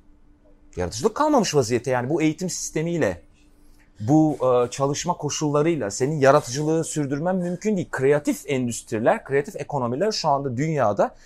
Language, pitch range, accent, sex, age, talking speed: Turkish, 130-180 Hz, native, male, 40-59, 125 wpm